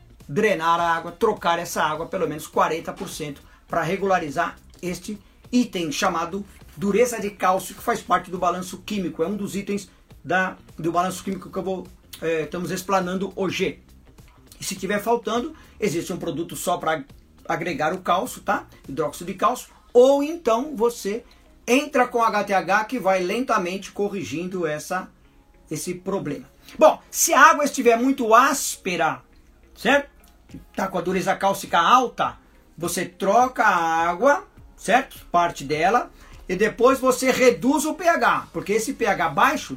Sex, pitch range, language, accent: male, 175-230 Hz, Portuguese, Brazilian